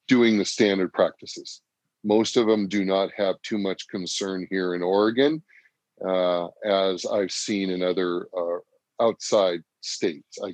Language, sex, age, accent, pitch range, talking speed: English, male, 30-49, American, 100-110 Hz, 150 wpm